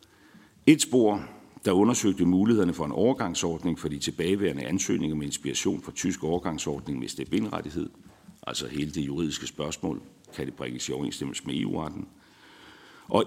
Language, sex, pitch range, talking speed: Danish, male, 80-105 Hz, 145 wpm